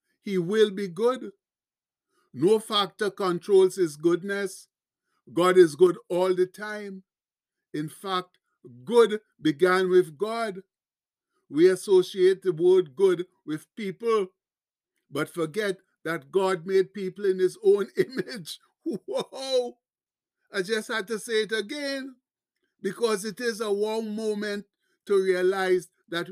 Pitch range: 185-230 Hz